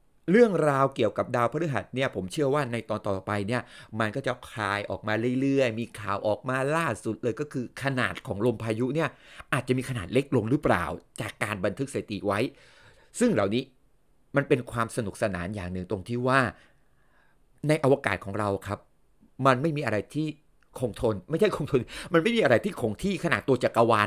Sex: male